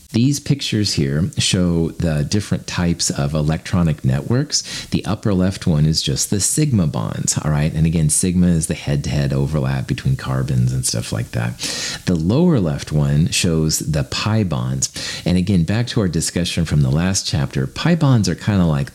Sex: male